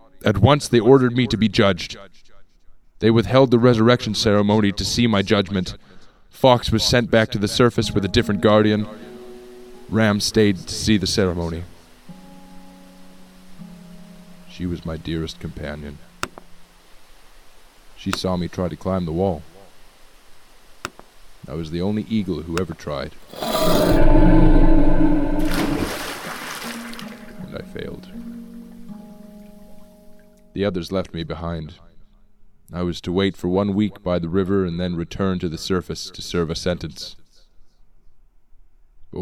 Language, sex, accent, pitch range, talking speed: English, male, American, 85-115 Hz, 130 wpm